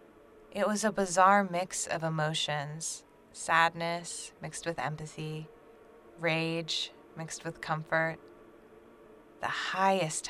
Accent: American